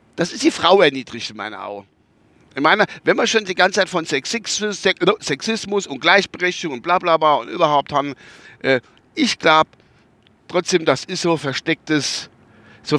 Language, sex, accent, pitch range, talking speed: German, male, German, 120-180 Hz, 155 wpm